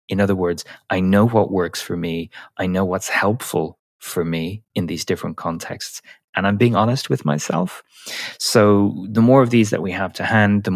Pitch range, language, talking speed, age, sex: 90-110 Hz, English, 200 wpm, 30-49, male